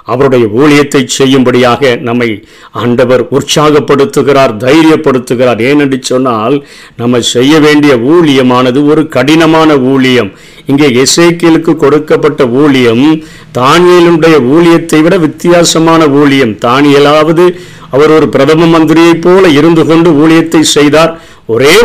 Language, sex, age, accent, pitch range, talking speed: Tamil, male, 50-69, native, 135-165 Hz, 100 wpm